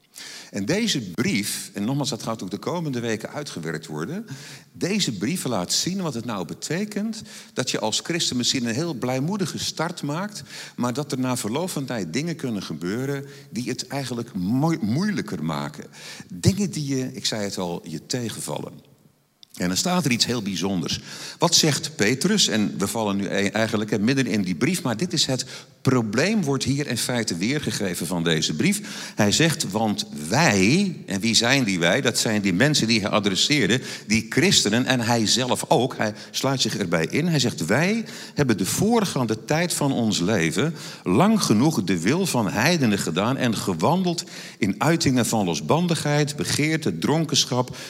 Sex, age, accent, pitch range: male, 50-69, Dutch, 115-165 Hz